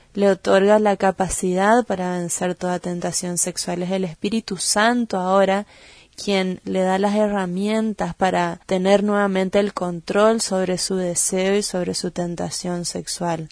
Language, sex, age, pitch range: Spanish, female, 20-39, 180-205 Hz